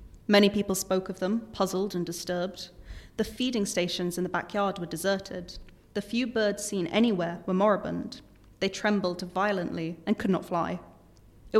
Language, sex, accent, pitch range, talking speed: English, female, British, 175-210 Hz, 160 wpm